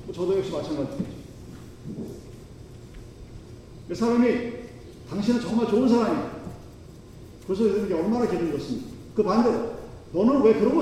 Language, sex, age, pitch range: Korean, male, 40-59, 150-215 Hz